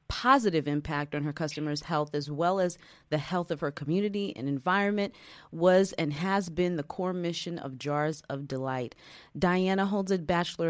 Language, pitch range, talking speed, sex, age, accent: English, 155-200 Hz, 175 wpm, female, 30-49, American